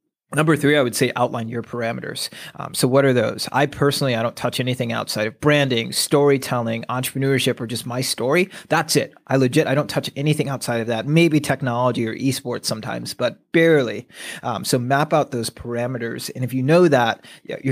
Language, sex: English, male